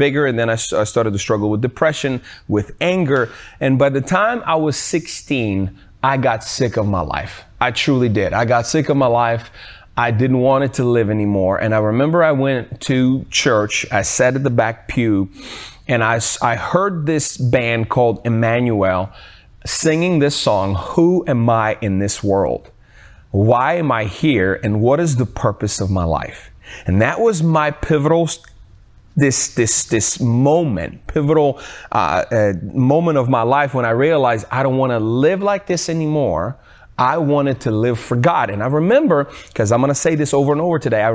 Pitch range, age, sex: 110-145 Hz, 30-49, male